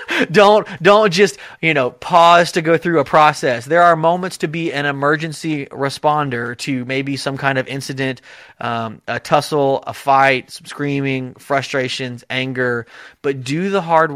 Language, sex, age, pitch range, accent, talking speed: English, male, 30-49, 125-155 Hz, American, 160 wpm